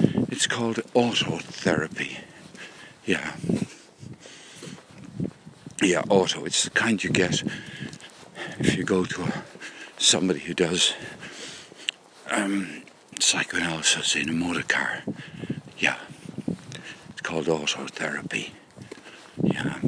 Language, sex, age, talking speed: English, male, 60-79, 90 wpm